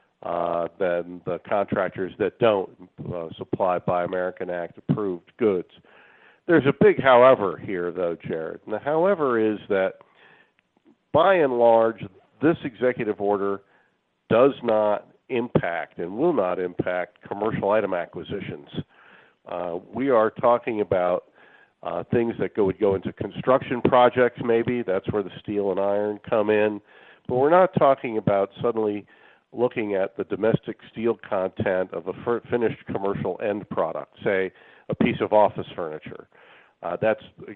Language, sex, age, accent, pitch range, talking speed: English, male, 50-69, American, 95-115 Hz, 140 wpm